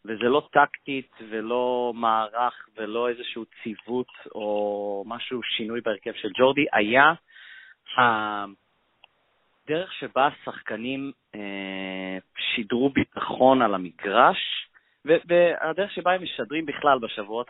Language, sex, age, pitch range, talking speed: Hebrew, male, 30-49, 110-145 Hz, 95 wpm